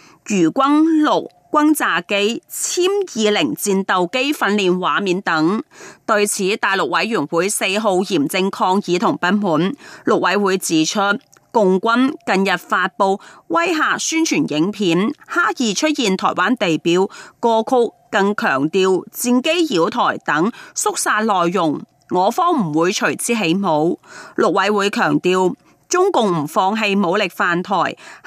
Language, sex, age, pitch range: Chinese, female, 30-49, 190-285 Hz